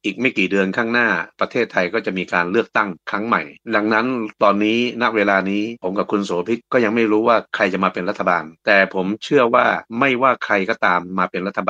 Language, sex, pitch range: Thai, male, 95-115 Hz